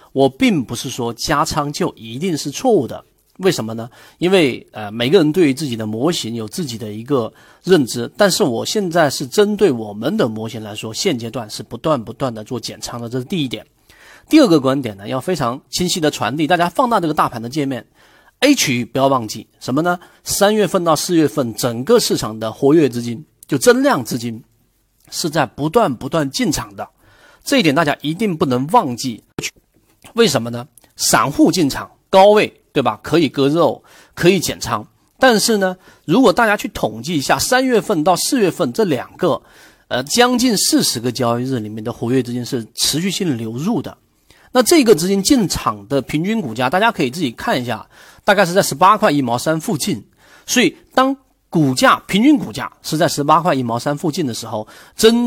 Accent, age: native, 40-59